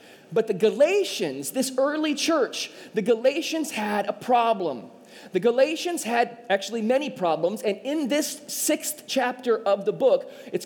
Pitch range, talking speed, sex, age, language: 205-265 Hz, 145 wpm, male, 30-49, English